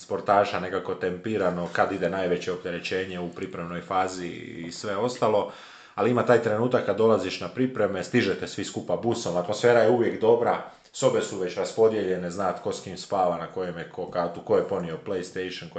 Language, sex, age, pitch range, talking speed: Croatian, male, 30-49, 90-105 Hz, 180 wpm